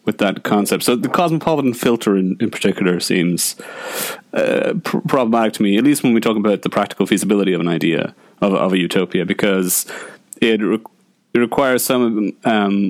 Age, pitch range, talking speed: 30-49, 100-125 Hz, 170 wpm